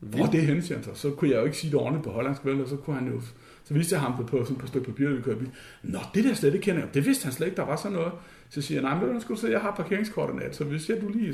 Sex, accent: male, native